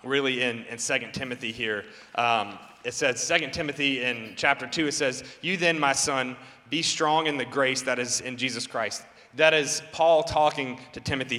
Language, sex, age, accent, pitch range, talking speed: English, male, 30-49, American, 125-160 Hz, 190 wpm